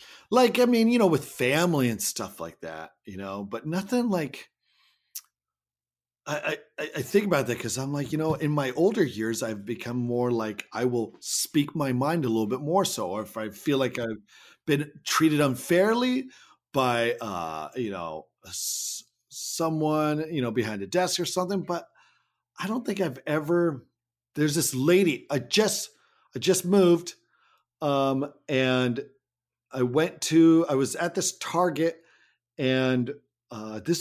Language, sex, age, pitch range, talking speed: English, male, 40-59, 115-165 Hz, 165 wpm